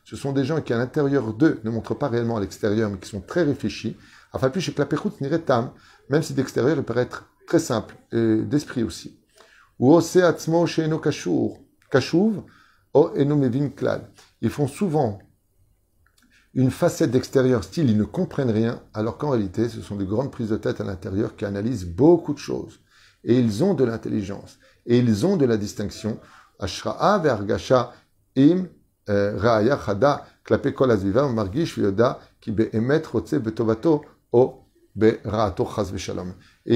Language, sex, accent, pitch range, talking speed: French, male, French, 110-145 Hz, 130 wpm